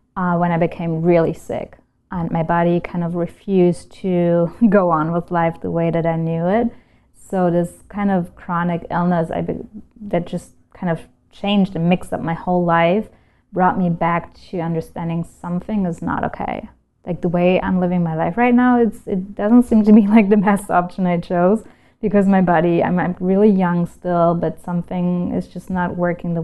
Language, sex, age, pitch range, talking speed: English, female, 20-39, 165-185 Hz, 195 wpm